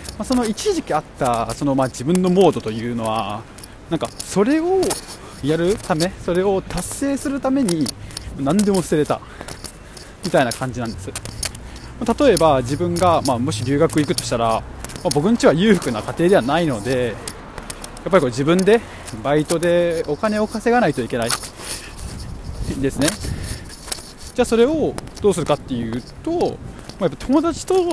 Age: 20-39